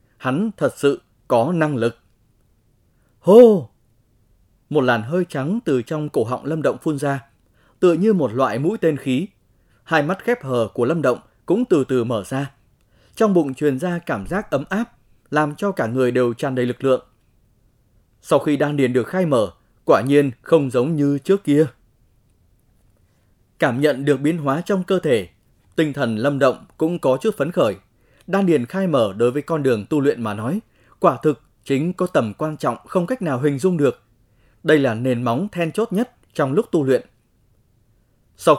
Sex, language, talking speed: male, Vietnamese, 190 wpm